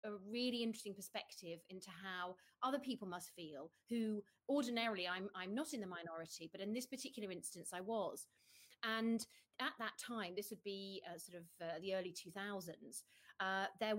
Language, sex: English, female